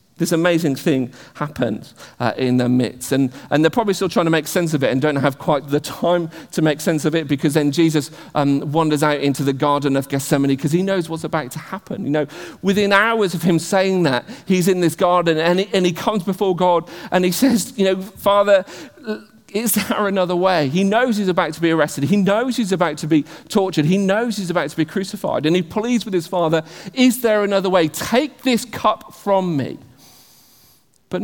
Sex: male